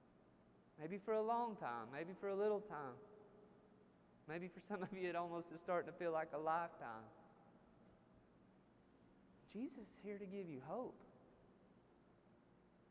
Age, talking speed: 30-49, 145 wpm